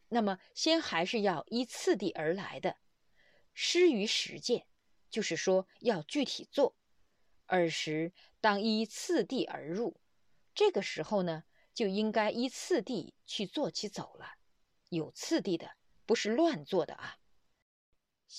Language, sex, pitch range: Chinese, female, 180-255 Hz